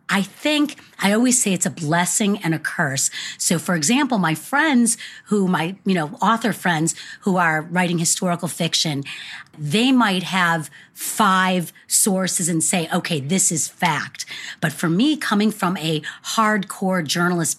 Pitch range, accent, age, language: 165-200 Hz, American, 40-59, English